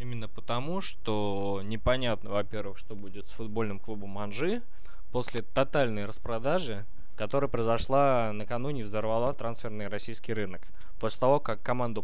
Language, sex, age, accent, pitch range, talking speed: Russian, male, 20-39, native, 105-125 Hz, 130 wpm